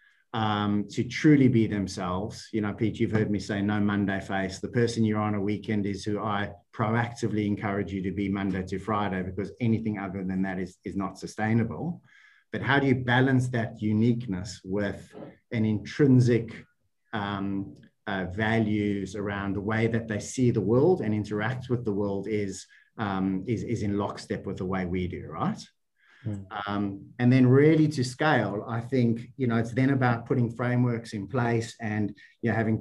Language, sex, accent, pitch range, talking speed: English, male, Australian, 105-125 Hz, 180 wpm